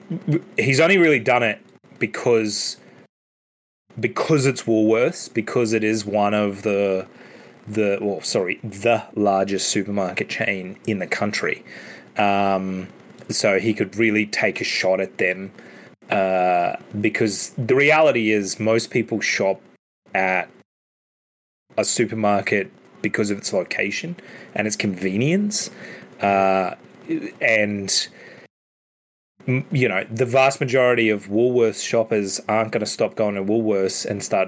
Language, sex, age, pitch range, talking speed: English, male, 20-39, 100-130 Hz, 125 wpm